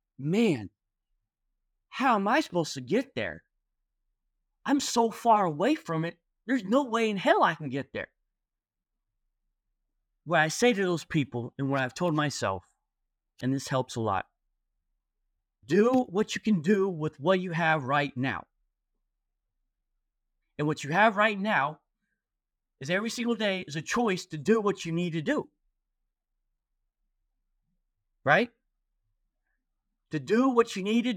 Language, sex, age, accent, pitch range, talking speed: English, male, 30-49, American, 155-220 Hz, 150 wpm